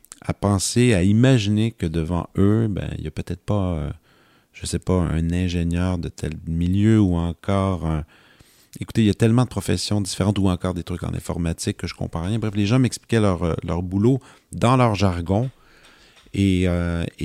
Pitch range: 85-120 Hz